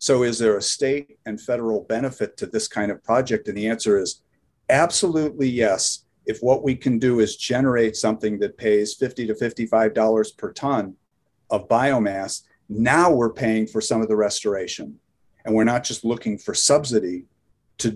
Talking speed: 175 wpm